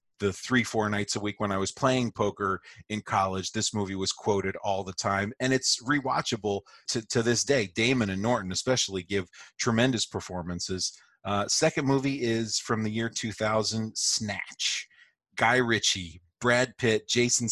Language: English